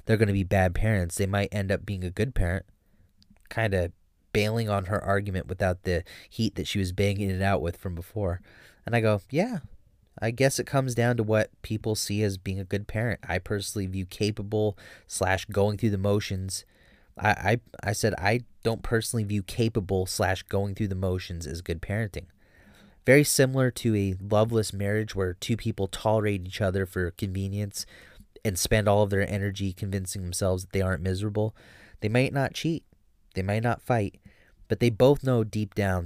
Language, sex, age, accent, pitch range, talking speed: English, male, 30-49, American, 95-105 Hz, 195 wpm